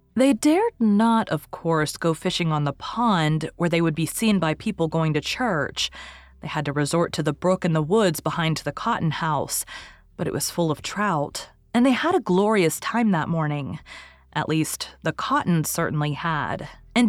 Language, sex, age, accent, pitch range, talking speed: English, female, 30-49, American, 155-225 Hz, 195 wpm